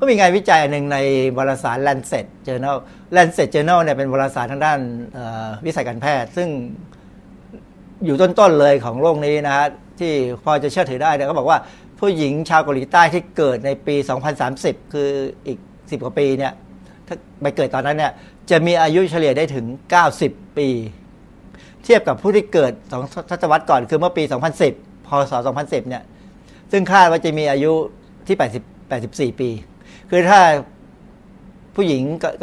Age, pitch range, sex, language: 60-79, 130-165 Hz, male, Thai